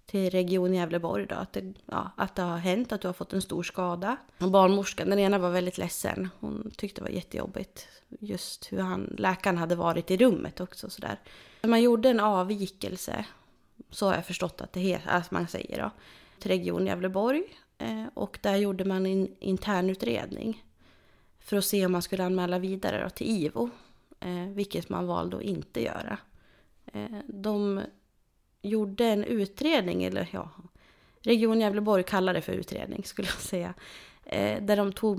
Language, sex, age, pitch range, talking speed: English, female, 20-39, 175-205 Hz, 155 wpm